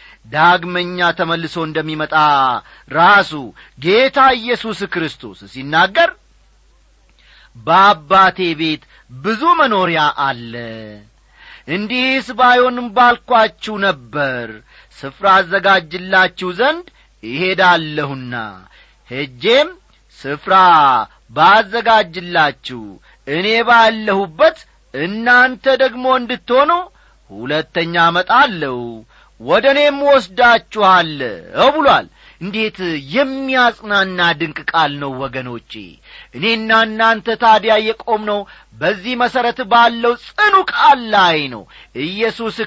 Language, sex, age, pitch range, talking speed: Amharic, male, 40-59, 160-240 Hz, 70 wpm